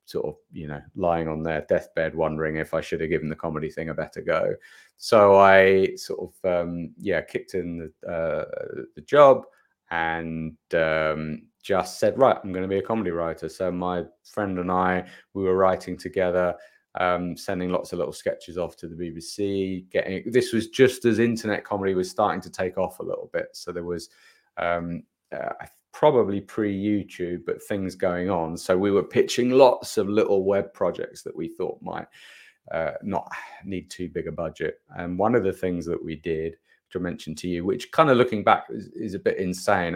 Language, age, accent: English, 30-49, British